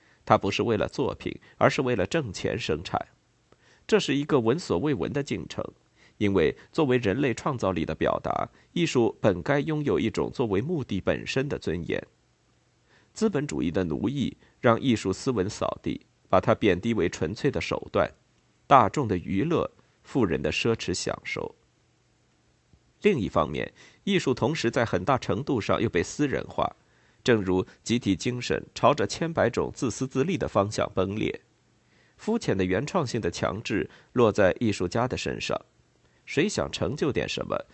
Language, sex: Chinese, male